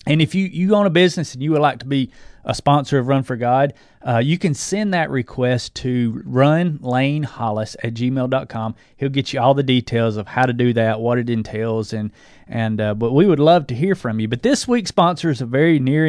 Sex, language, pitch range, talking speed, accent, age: male, English, 120-155 Hz, 230 wpm, American, 30-49